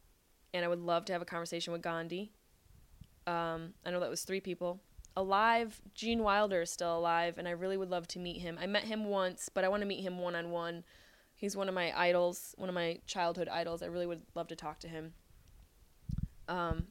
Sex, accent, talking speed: female, American, 215 wpm